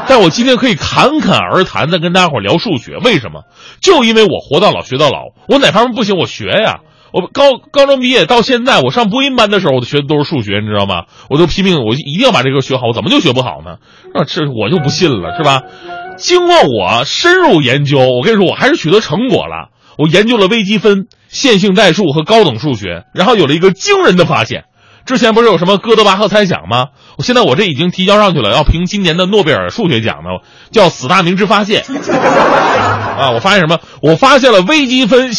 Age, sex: 30-49, male